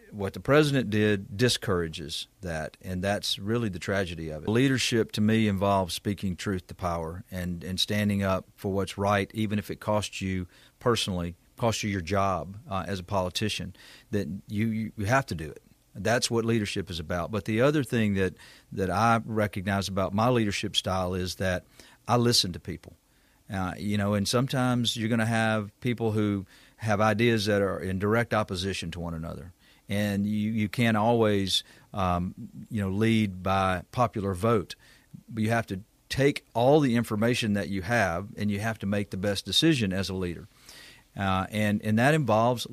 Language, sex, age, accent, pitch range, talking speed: English, male, 40-59, American, 95-115 Hz, 185 wpm